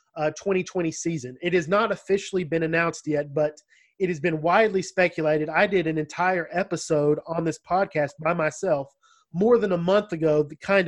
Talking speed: 175 wpm